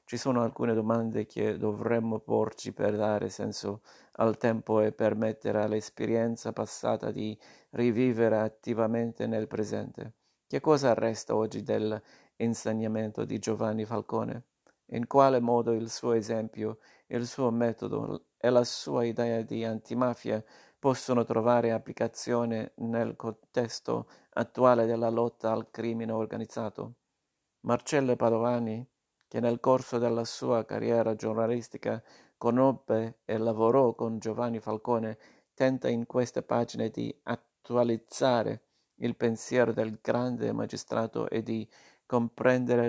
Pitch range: 110-120 Hz